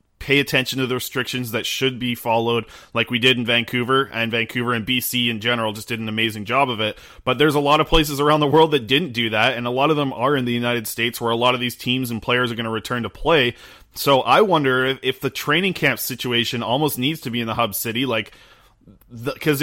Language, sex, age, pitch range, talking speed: English, male, 20-39, 120-140 Hz, 250 wpm